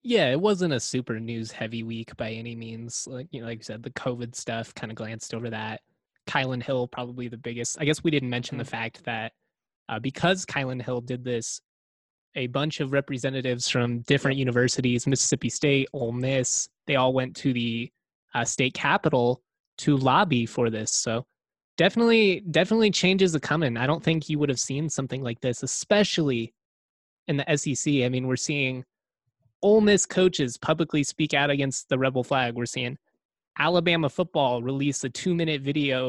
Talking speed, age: 185 wpm, 20-39